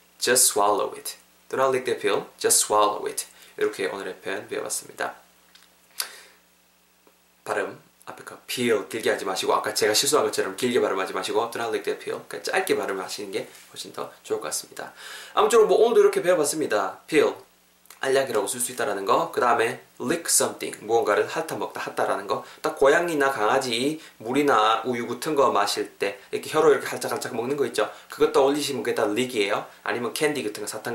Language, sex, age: Korean, male, 20-39